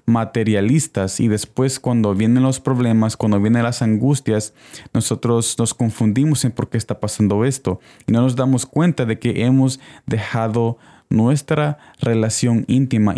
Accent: Mexican